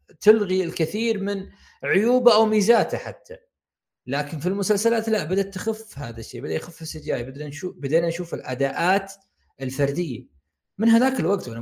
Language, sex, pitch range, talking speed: Arabic, male, 130-185 Hz, 145 wpm